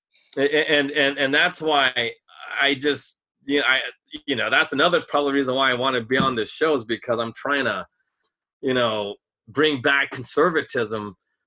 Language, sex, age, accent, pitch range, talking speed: English, male, 30-49, American, 125-160 Hz, 180 wpm